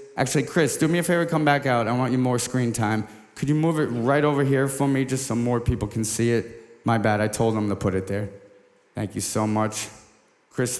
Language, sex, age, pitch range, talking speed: English, male, 30-49, 110-145 Hz, 250 wpm